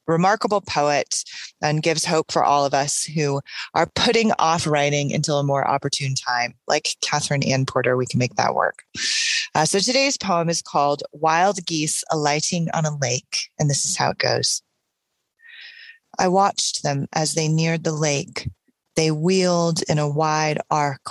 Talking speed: 170 wpm